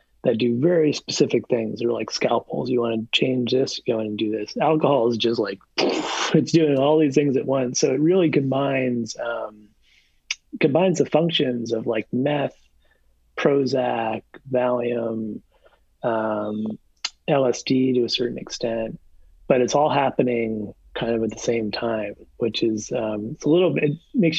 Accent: American